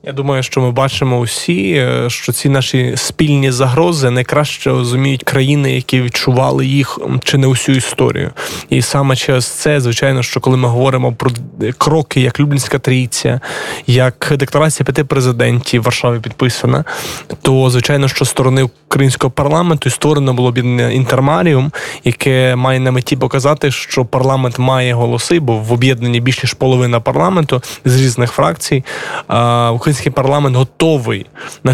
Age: 20-39